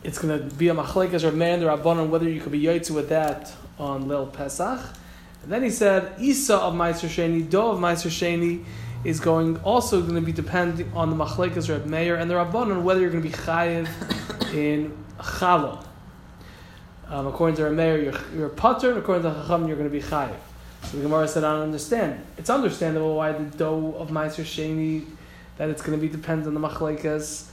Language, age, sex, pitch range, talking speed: English, 20-39, male, 155-190 Hz, 210 wpm